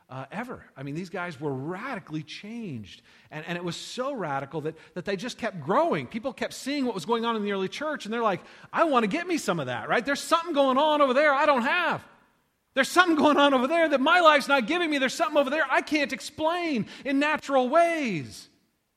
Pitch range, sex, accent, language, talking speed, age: 150-225 Hz, male, American, English, 235 wpm, 40-59